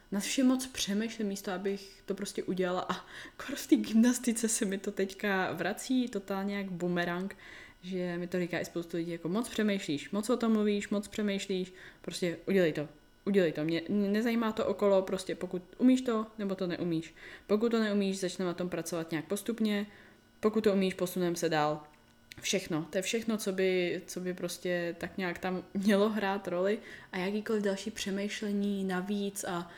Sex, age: female, 20-39